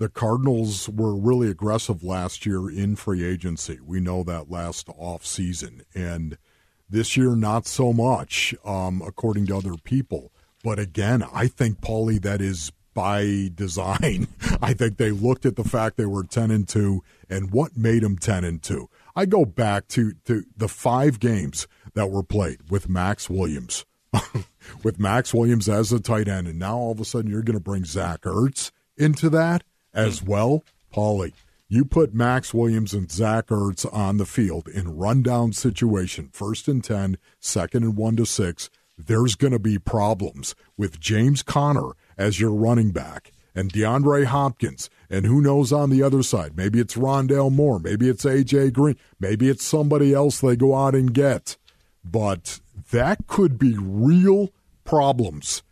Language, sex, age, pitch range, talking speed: English, male, 50-69, 95-125 Hz, 170 wpm